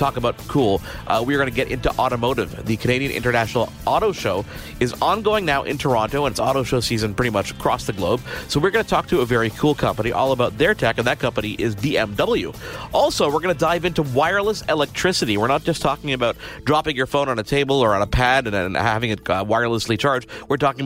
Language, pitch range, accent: English, 115-140 Hz, American